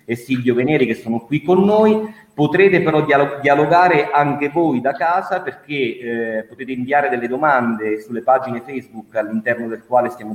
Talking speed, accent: 170 wpm, native